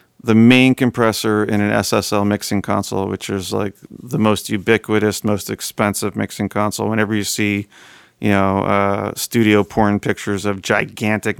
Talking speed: 155 wpm